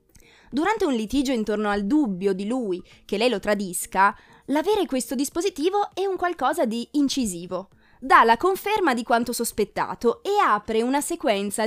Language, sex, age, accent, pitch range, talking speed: Italian, female, 20-39, native, 210-315 Hz, 155 wpm